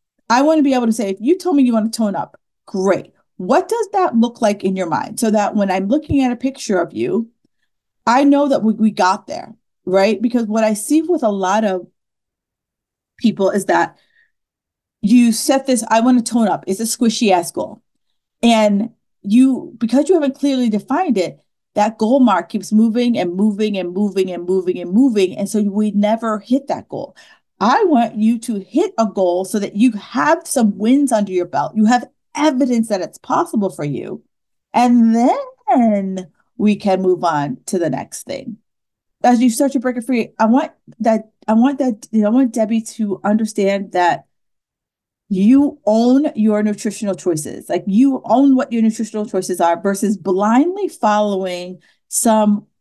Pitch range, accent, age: 200-255 Hz, American, 40-59